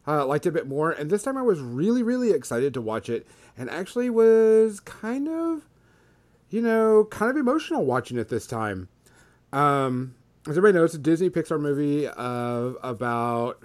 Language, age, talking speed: English, 30-49, 180 wpm